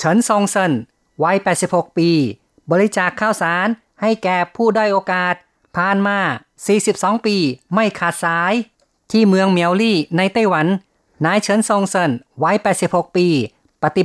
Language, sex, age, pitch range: Thai, female, 30-49, 165-195 Hz